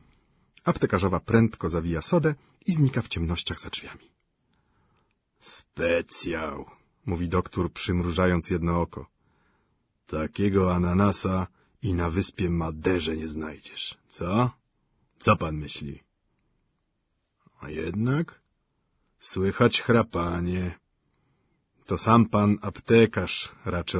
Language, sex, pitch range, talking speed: Ukrainian, male, 85-110 Hz, 95 wpm